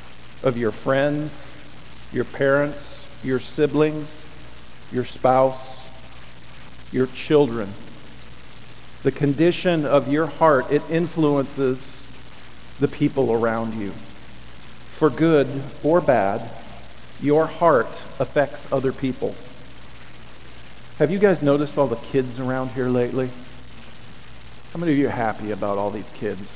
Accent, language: American, English